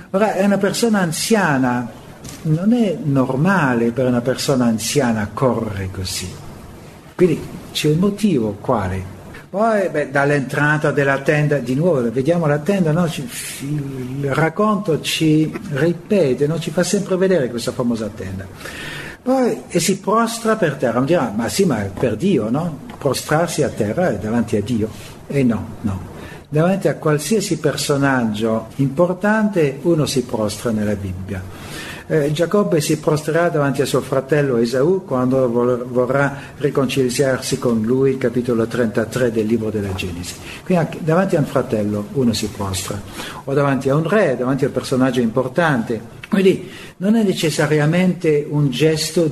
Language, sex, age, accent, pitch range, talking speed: Italian, male, 60-79, native, 120-170 Hz, 150 wpm